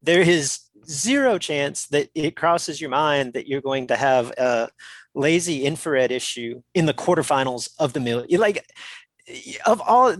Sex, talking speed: male, 160 wpm